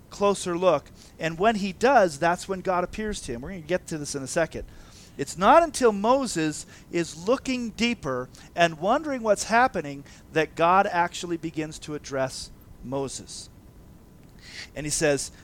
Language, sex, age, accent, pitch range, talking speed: English, male, 40-59, American, 140-200 Hz, 165 wpm